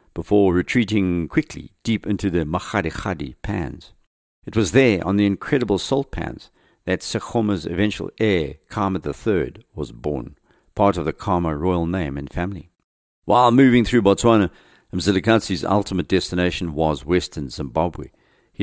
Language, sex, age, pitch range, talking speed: English, male, 50-69, 85-115 Hz, 140 wpm